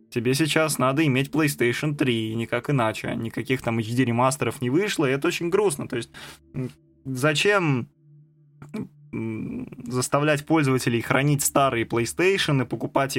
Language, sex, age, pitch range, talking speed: Russian, male, 20-39, 120-150 Hz, 130 wpm